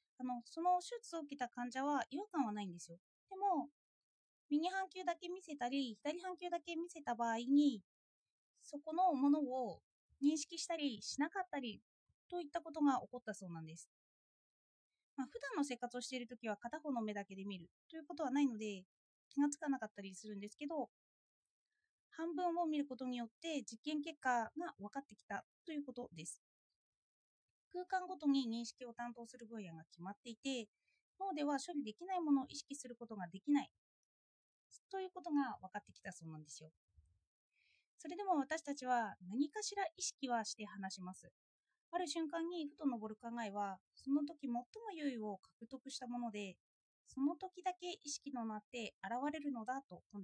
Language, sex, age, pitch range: Japanese, female, 20-39, 215-320 Hz